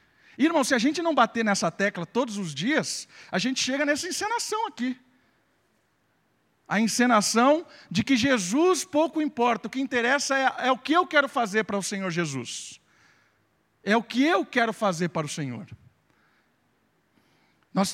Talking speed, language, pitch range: 160 wpm, Portuguese, 145-225 Hz